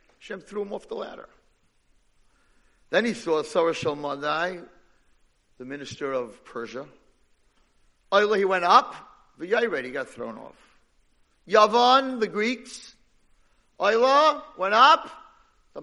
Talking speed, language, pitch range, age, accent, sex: 120 wpm, English, 180-265 Hz, 50-69, American, male